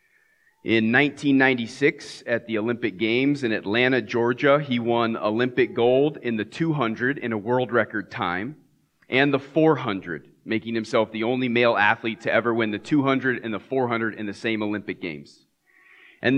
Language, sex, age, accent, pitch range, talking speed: English, male, 30-49, American, 110-135 Hz, 160 wpm